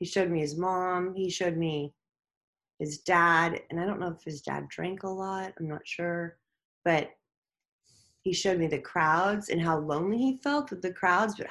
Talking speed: 200 wpm